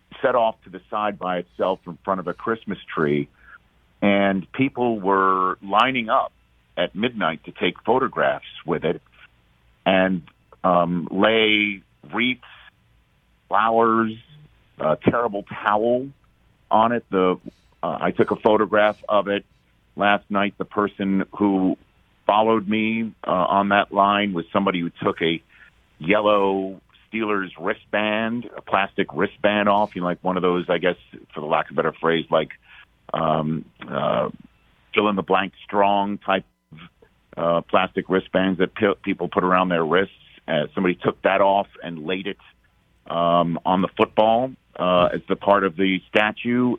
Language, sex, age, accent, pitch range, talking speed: English, male, 50-69, American, 90-105 Hz, 150 wpm